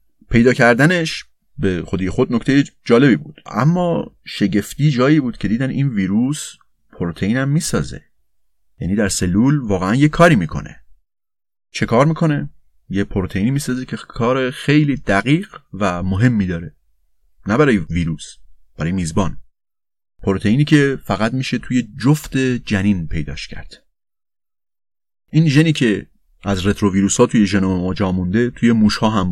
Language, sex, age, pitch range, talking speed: Persian, male, 30-49, 95-130 Hz, 130 wpm